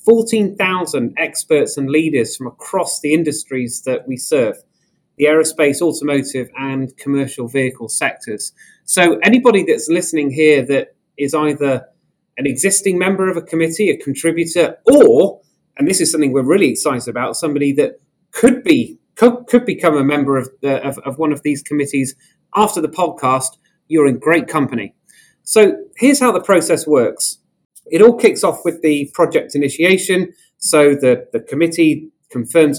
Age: 30-49